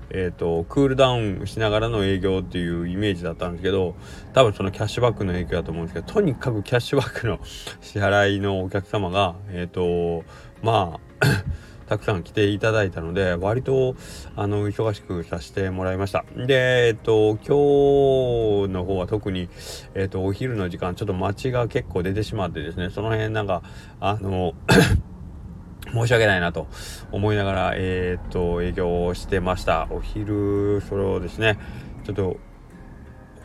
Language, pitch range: Japanese, 90-110 Hz